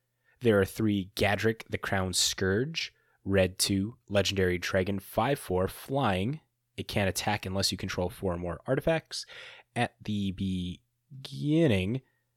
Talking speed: 125 wpm